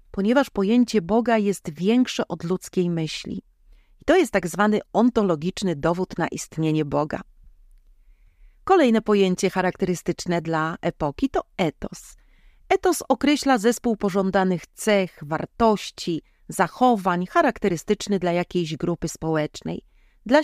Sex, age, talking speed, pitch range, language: female, 40-59, 110 wpm, 170-230 Hz, Polish